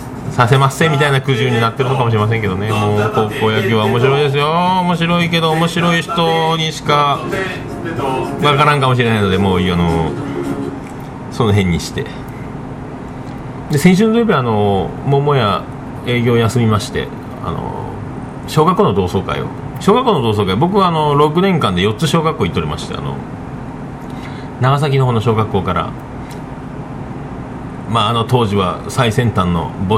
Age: 40-59